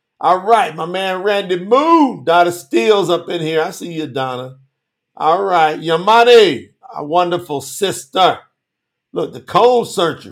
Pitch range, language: 150-200 Hz, English